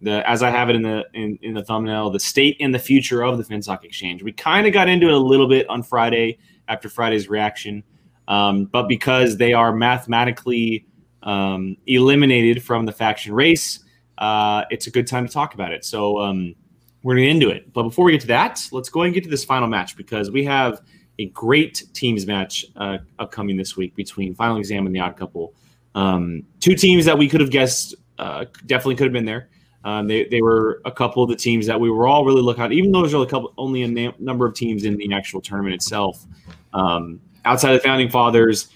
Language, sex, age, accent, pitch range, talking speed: English, male, 20-39, American, 100-130 Hz, 225 wpm